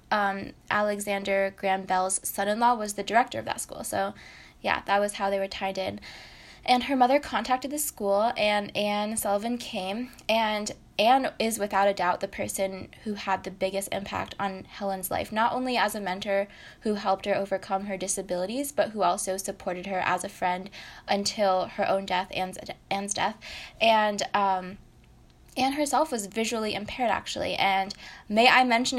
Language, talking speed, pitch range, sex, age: English, 175 wpm, 190-220 Hz, female, 10-29